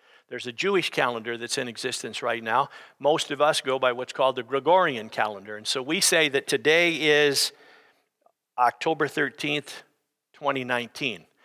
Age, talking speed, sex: 50-69, 150 wpm, male